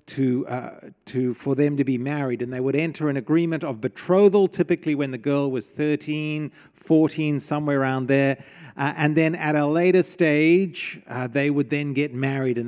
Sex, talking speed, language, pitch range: male, 190 wpm, English, 135-185 Hz